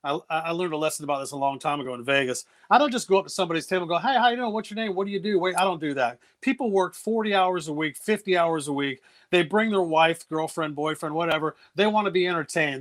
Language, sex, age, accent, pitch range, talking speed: English, male, 40-59, American, 155-200 Hz, 285 wpm